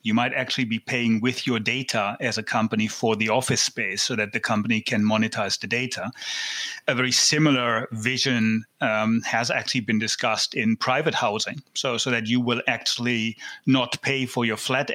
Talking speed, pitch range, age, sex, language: 185 wpm, 115-140 Hz, 30-49, male, English